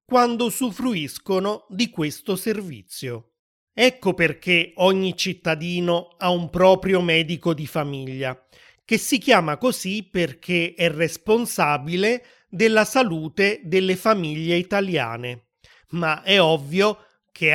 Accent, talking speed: native, 105 wpm